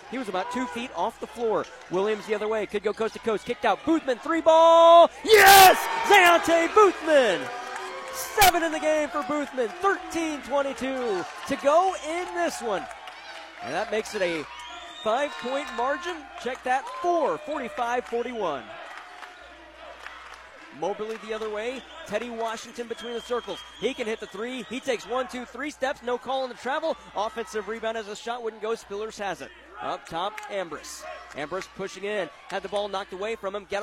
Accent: American